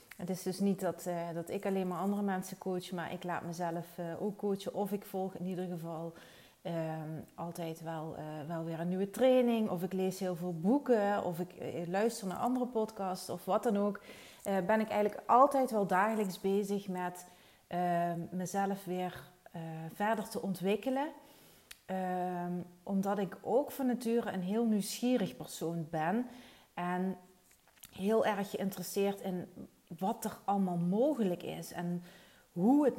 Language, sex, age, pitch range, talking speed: Dutch, female, 30-49, 175-215 Hz, 165 wpm